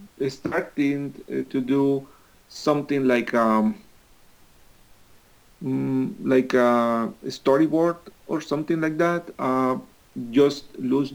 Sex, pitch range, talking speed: male, 130-155 Hz, 90 wpm